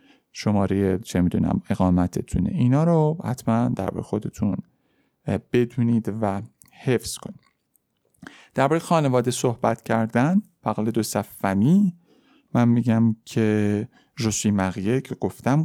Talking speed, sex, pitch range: 110 wpm, male, 105-135 Hz